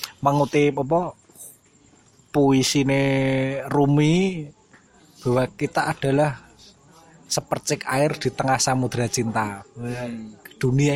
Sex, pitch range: male, 125-150 Hz